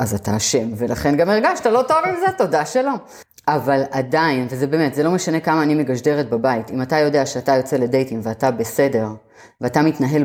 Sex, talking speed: female, 195 wpm